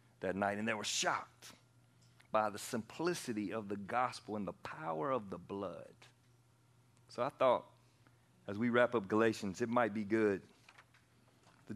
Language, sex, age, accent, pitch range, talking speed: English, male, 40-59, American, 110-125 Hz, 160 wpm